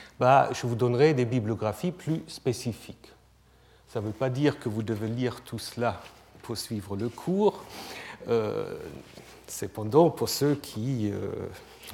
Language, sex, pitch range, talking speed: French, male, 115-140 Hz, 145 wpm